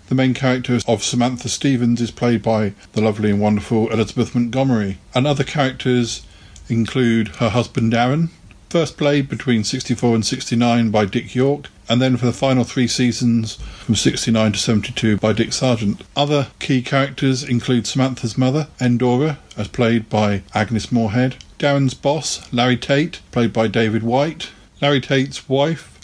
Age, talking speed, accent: 50-69, 155 wpm, British